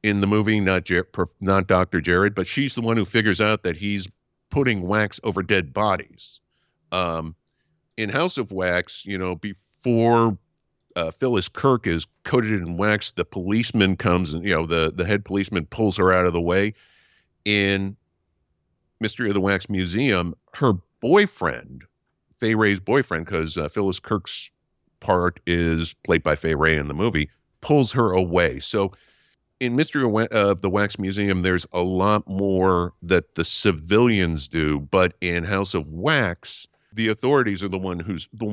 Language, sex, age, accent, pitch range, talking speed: English, male, 50-69, American, 85-105 Hz, 165 wpm